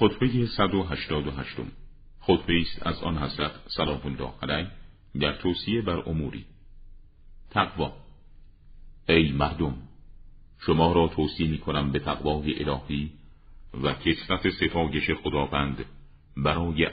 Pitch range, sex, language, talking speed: 70-85 Hz, male, Persian, 105 wpm